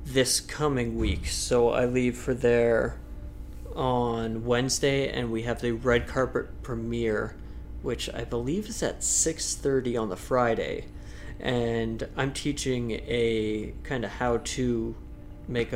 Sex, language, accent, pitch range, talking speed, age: male, English, American, 115-130 Hz, 135 wpm, 30-49